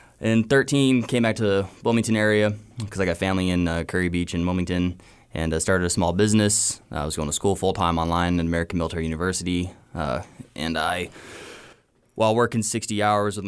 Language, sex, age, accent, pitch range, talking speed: English, male, 20-39, American, 85-105 Hz, 195 wpm